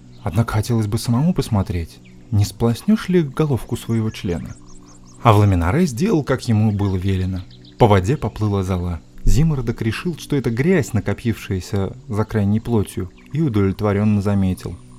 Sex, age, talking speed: male, 20-39, 140 wpm